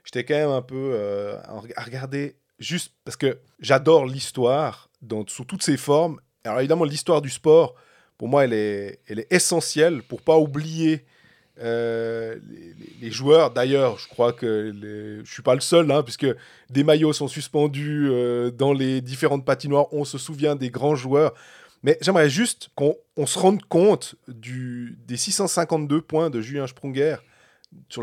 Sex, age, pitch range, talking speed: male, 30-49, 125-160 Hz, 175 wpm